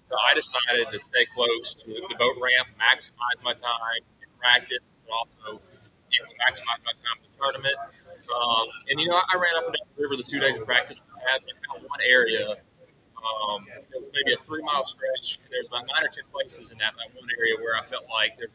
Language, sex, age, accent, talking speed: English, male, 30-49, American, 220 wpm